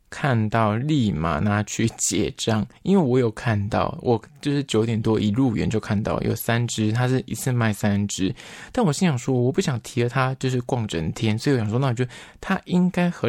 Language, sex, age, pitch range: Chinese, male, 20-39, 110-130 Hz